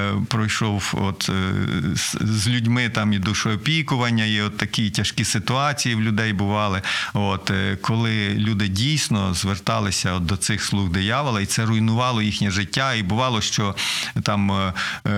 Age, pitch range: 50-69, 100-125 Hz